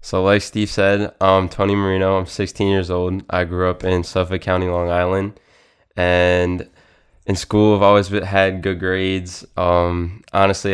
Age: 20-39